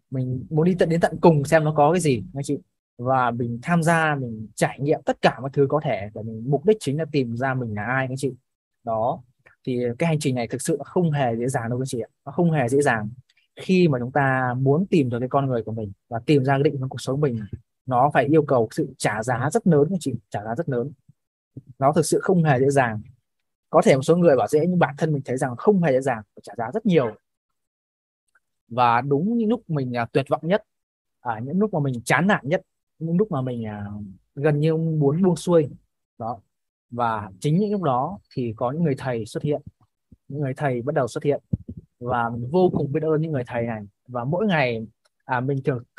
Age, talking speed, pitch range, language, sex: 20-39, 250 wpm, 120-160 Hz, Vietnamese, male